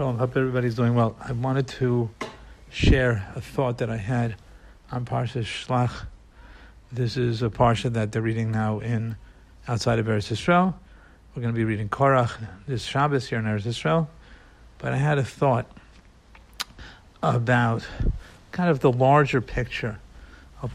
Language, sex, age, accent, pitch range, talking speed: English, male, 50-69, American, 110-140 Hz, 155 wpm